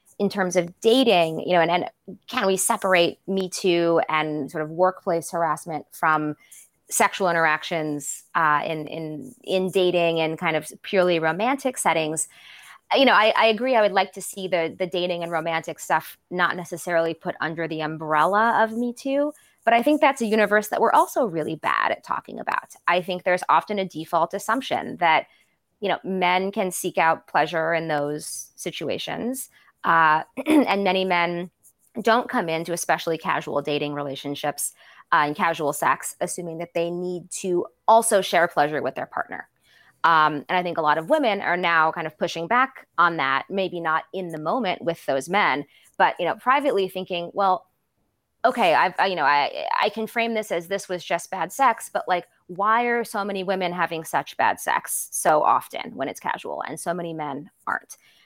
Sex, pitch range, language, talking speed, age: female, 160-200 Hz, English, 185 wpm, 20-39